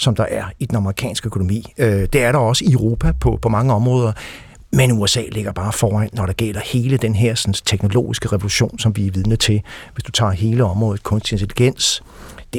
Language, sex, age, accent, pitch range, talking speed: Danish, male, 60-79, native, 105-125 Hz, 205 wpm